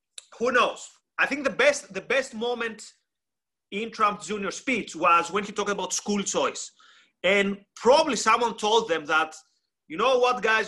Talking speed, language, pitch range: 170 wpm, English, 190-235 Hz